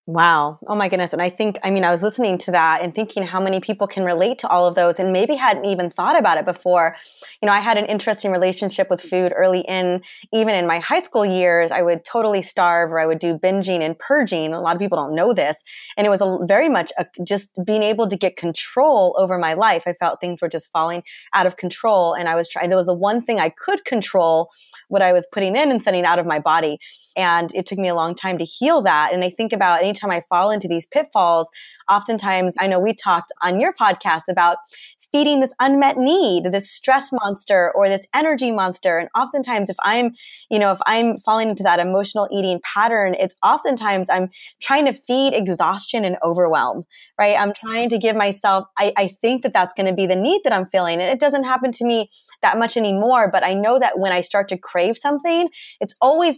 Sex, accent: female, American